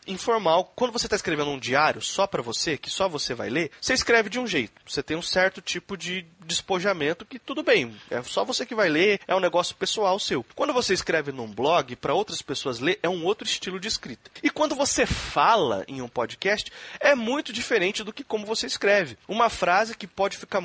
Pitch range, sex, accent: 165-225 Hz, male, Brazilian